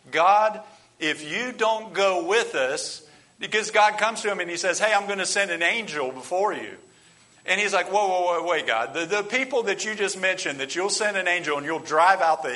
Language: English